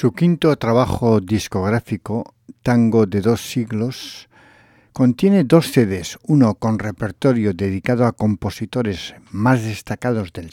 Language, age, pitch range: English, 60-79, 105-130 Hz